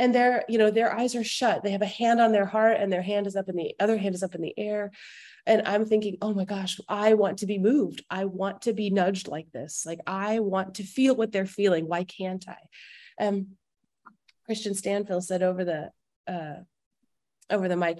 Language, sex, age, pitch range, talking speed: English, female, 30-49, 185-220 Hz, 225 wpm